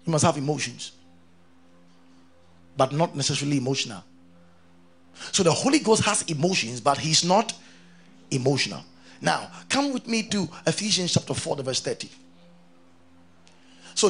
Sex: male